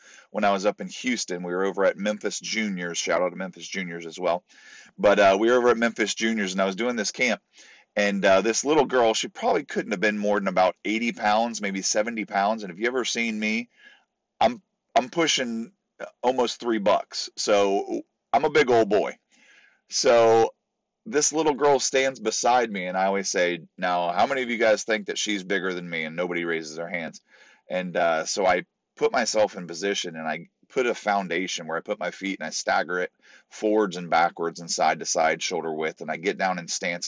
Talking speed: 215 wpm